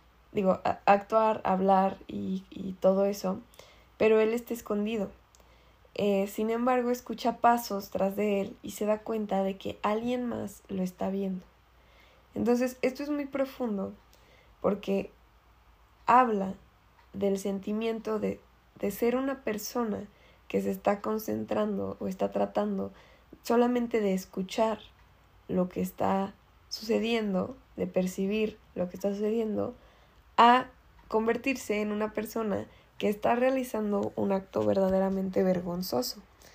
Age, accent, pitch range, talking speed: 20-39, Mexican, 185-230 Hz, 125 wpm